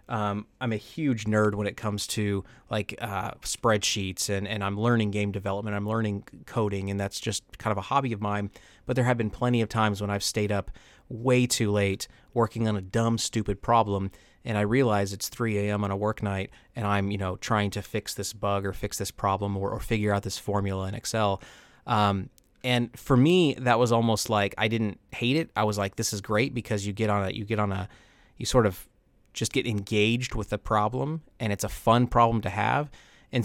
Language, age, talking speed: English, 30-49, 220 wpm